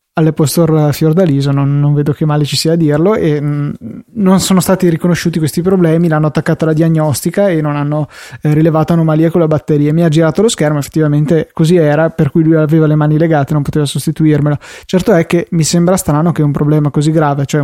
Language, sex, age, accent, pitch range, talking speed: Italian, male, 20-39, native, 150-170 Hz, 215 wpm